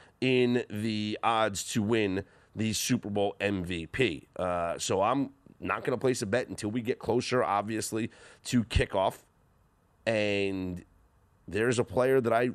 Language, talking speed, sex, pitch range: English, 150 wpm, male, 95-120 Hz